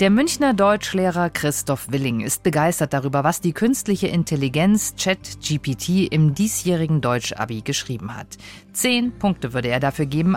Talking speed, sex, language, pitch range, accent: 140 wpm, female, German, 135-200 Hz, German